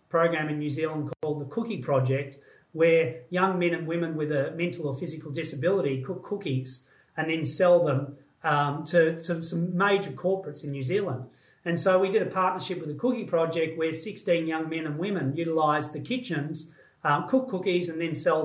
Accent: Australian